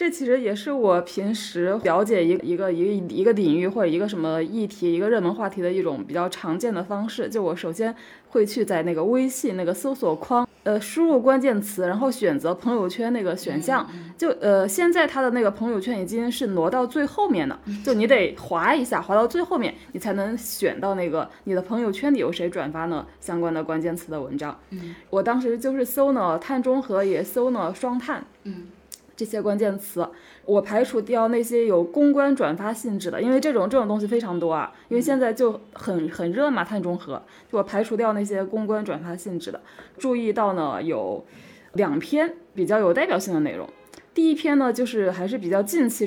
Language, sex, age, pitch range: Chinese, female, 20-39, 180-255 Hz